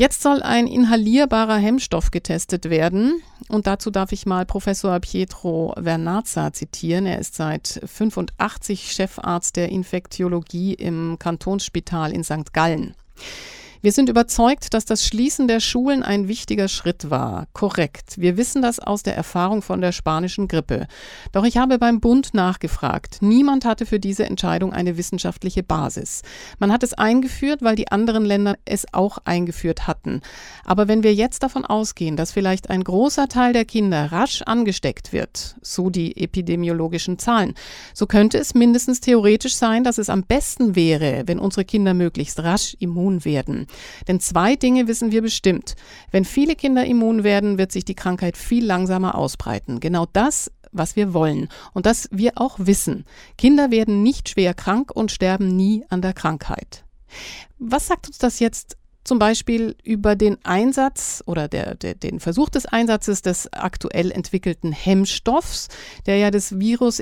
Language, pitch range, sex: German, 180-235 Hz, female